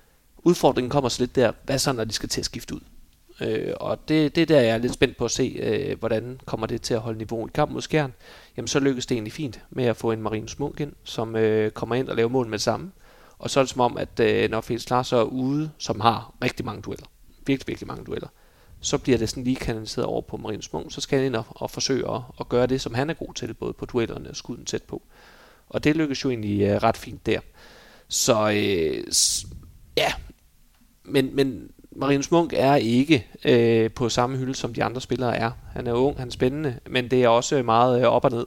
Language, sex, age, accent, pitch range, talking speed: Danish, male, 30-49, native, 115-135 Hz, 250 wpm